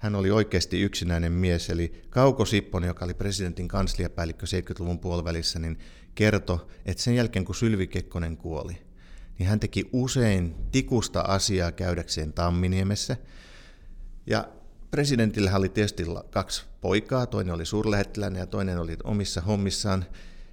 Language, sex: Finnish, male